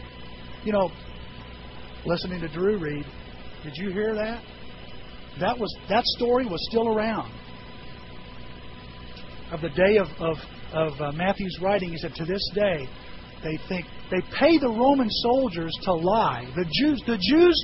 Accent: American